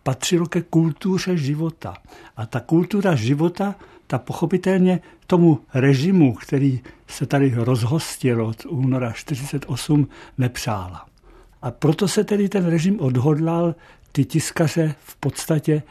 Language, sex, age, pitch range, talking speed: Czech, male, 60-79, 125-165 Hz, 115 wpm